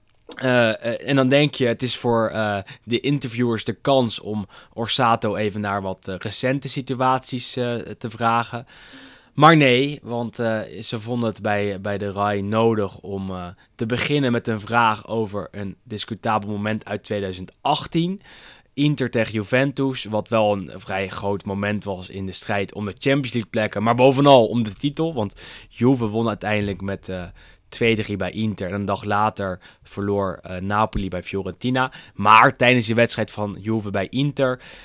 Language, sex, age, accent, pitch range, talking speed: Dutch, male, 20-39, Dutch, 100-125 Hz, 170 wpm